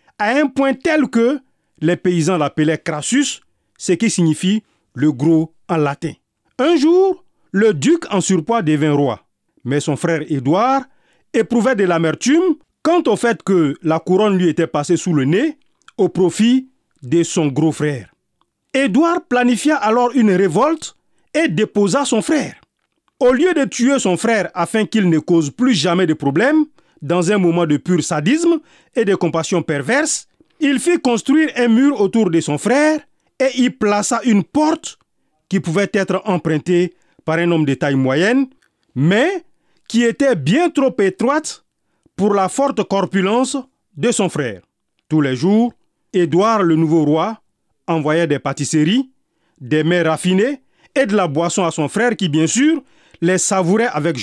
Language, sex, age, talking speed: French, male, 40-59, 160 wpm